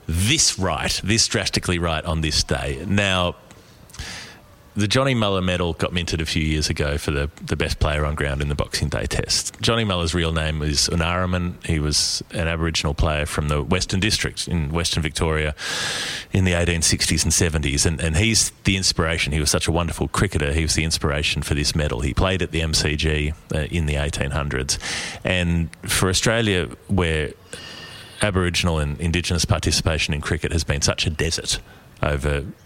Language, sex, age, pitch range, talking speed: English, male, 30-49, 75-95 Hz, 175 wpm